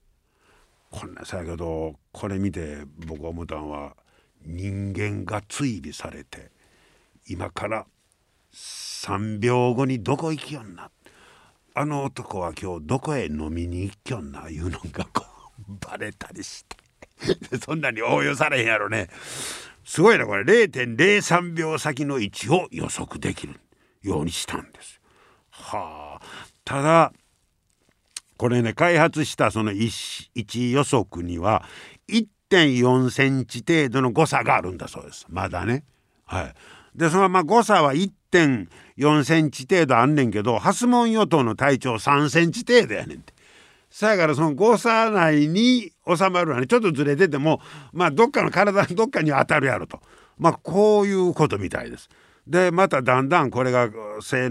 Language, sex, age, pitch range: Japanese, male, 60-79, 105-165 Hz